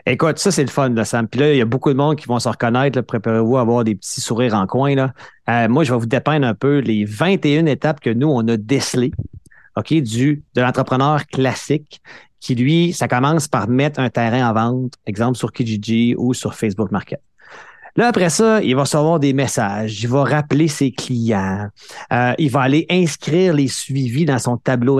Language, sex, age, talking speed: French, male, 30-49, 215 wpm